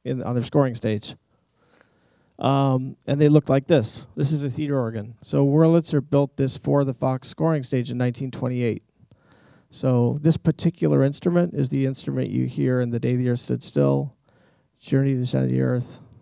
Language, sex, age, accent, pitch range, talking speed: English, male, 40-59, American, 120-140 Hz, 185 wpm